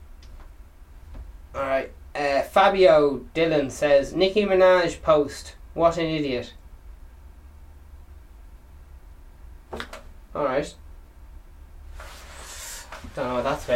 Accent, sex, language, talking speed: Irish, male, English, 65 wpm